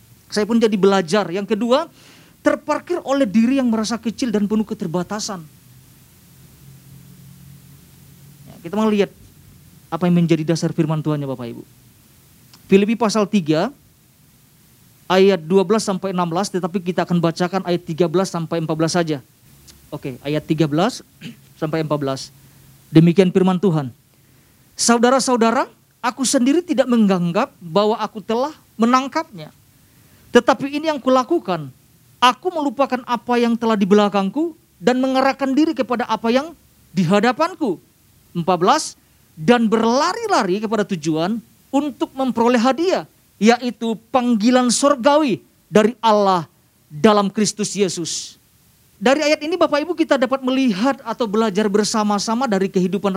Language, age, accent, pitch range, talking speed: Indonesian, 40-59, native, 165-250 Hz, 120 wpm